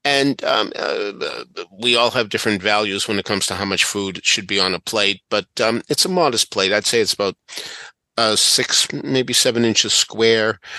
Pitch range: 100-130 Hz